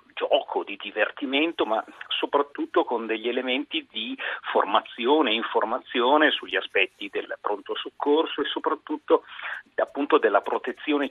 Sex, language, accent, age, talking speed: male, Italian, native, 40-59, 120 wpm